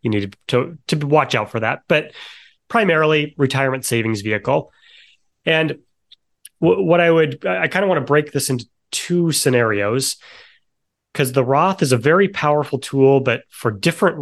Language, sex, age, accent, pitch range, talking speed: English, male, 30-49, American, 120-145 Hz, 170 wpm